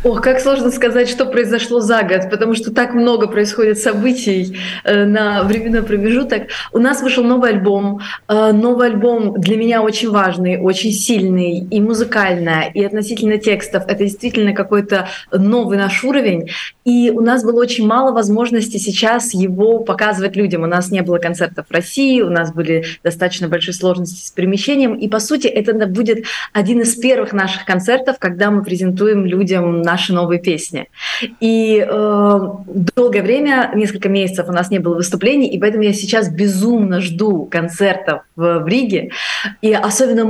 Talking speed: 160 wpm